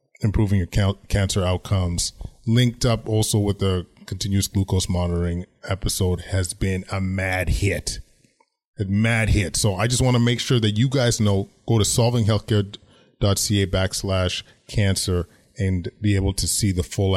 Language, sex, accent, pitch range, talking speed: English, male, American, 95-115 Hz, 155 wpm